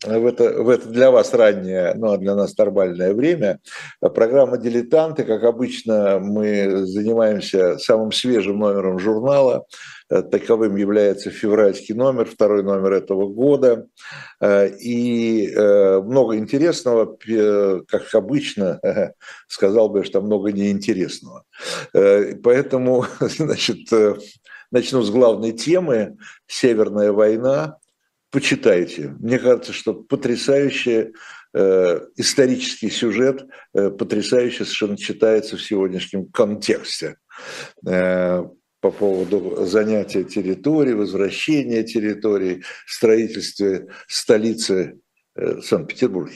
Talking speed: 90 wpm